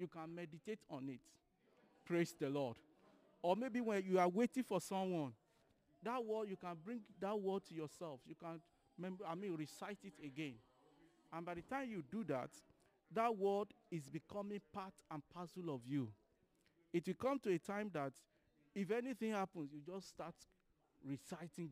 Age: 50-69